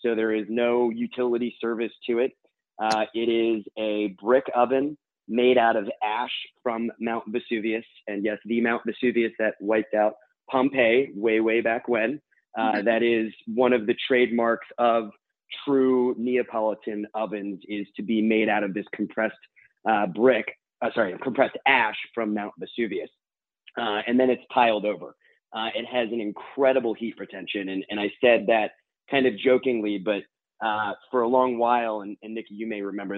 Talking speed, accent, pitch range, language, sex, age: 170 wpm, American, 105-120 Hz, English, male, 30-49